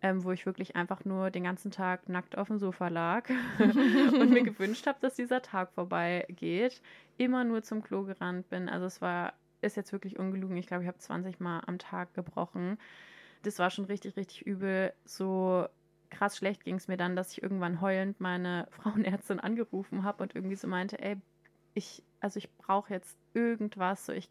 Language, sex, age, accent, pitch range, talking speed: German, female, 20-39, German, 180-200 Hz, 195 wpm